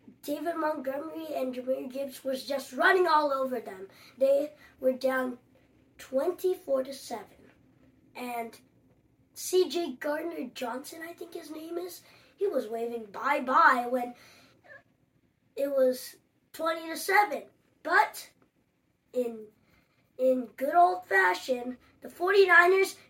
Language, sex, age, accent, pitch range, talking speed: English, female, 20-39, American, 265-350 Hz, 115 wpm